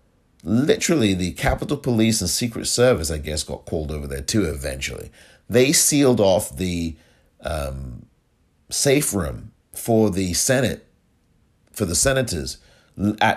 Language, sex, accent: English, male, American